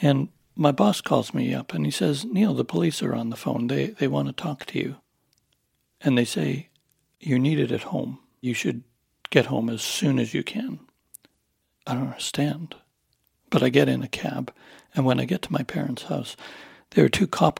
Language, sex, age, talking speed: English, male, 60-79, 205 wpm